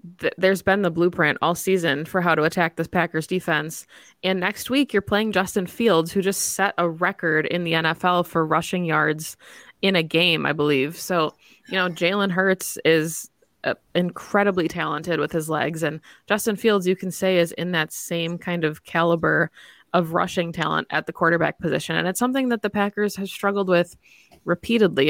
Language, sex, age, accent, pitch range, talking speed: English, female, 20-39, American, 160-190 Hz, 185 wpm